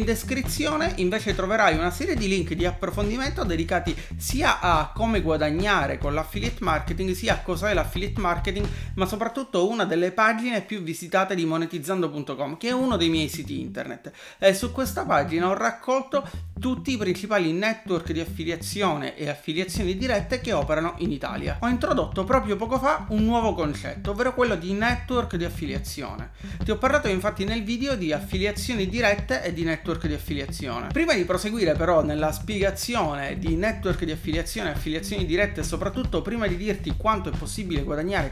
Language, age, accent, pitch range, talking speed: Italian, 30-49, native, 165-225 Hz, 170 wpm